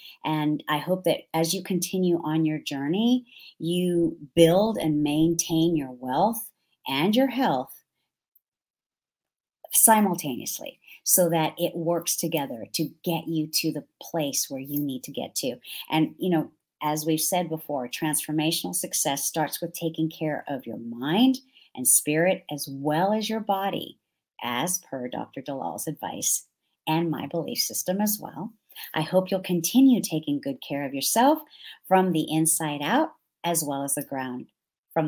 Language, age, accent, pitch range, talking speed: English, 40-59, American, 150-185 Hz, 155 wpm